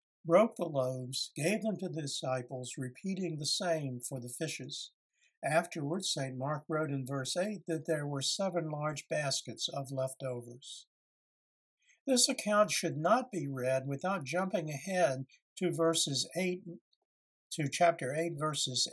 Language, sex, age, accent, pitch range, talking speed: English, male, 60-79, American, 135-175 Hz, 145 wpm